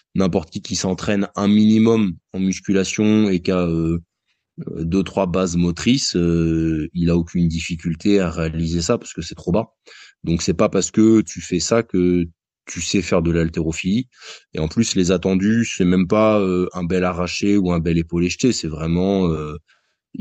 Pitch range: 85-100 Hz